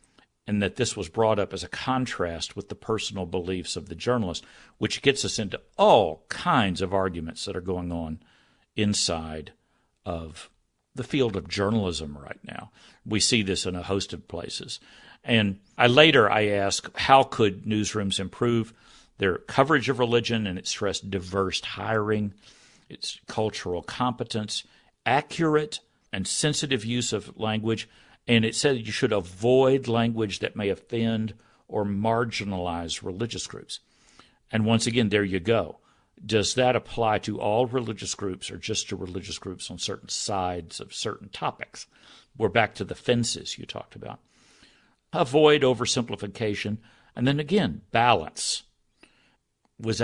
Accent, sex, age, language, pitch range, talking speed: American, male, 50-69, English, 95-120 Hz, 150 wpm